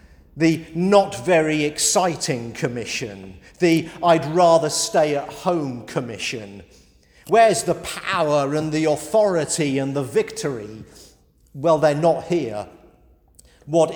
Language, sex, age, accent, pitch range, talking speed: English, male, 50-69, British, 130-175 Hz, 110 wpm